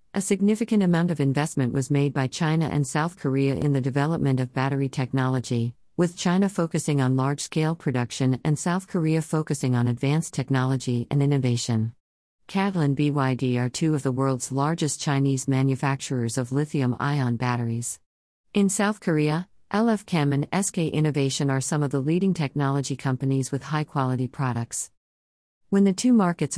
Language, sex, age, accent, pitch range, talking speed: English, female, 50-69, American, 130-160 Hz, 155 wpm